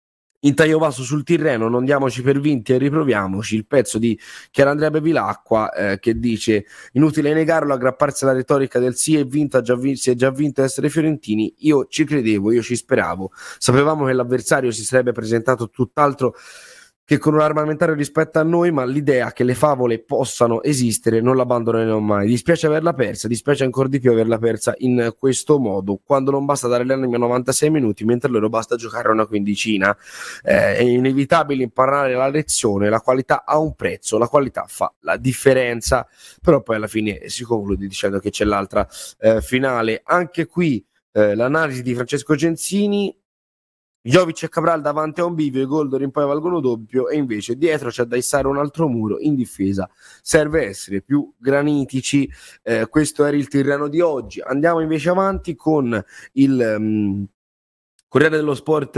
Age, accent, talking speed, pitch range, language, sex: 20-39, native, 170 wpm, 115-150 Hz, Italian, male